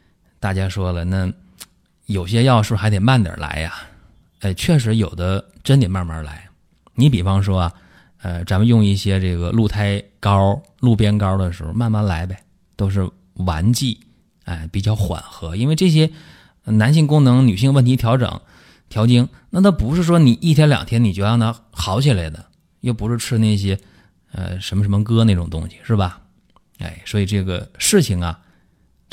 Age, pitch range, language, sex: 20-39, 90-120 Hz, Chinese, male